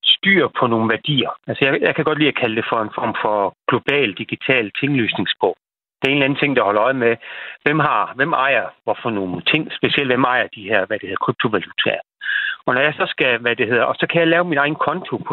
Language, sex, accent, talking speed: Danish, male, native, 245 wpm